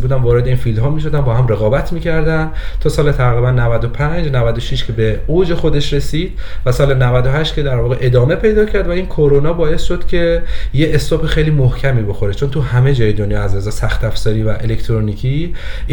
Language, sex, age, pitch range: Persian, male, 30-49, 115-140 Hz